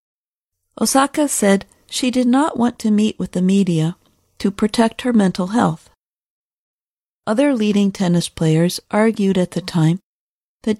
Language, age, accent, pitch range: Chinese, 50-69, American, 180-235 Hz